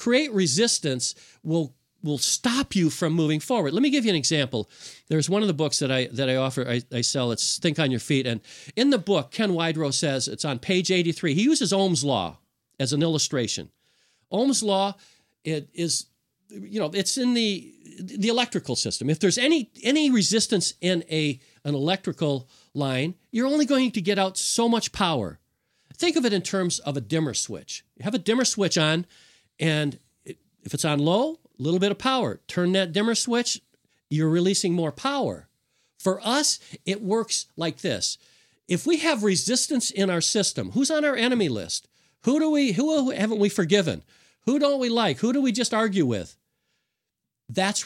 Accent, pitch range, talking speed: American, 150-230 Hz, 190 wpm